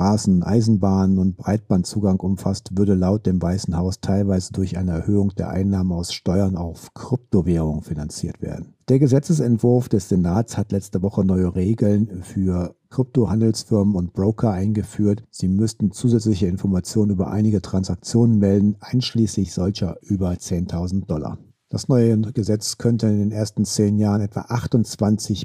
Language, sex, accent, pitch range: German, male, German, 95-110 Hz